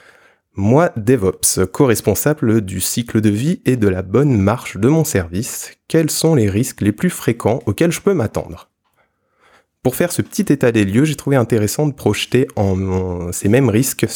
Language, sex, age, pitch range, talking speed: French, male, 20-39, 100-135 Hz, 180 wpm